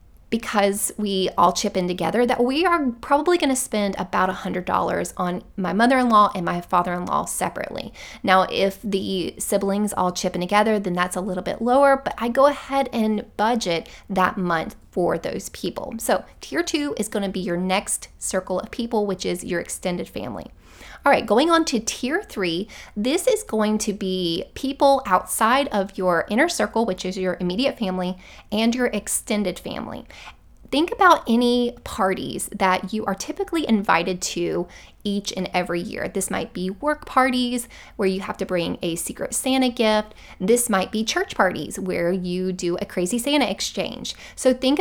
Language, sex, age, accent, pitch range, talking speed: English, female, 20-39, American, 185-250 Hz, 175 wpm